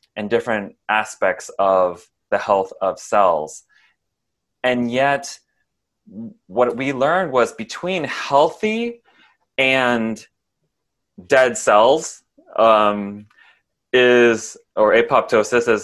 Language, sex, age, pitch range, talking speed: English, male, 20-39, 95-125 Hz, 90 wpm